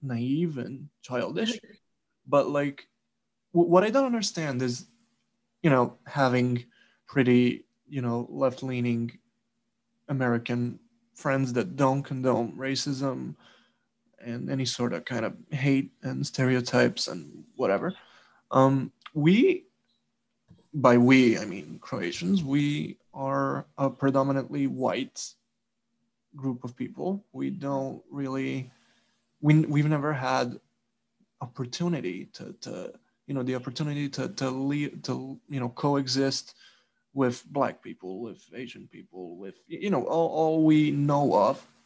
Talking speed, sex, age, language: 120 wpm, male, 20-39, English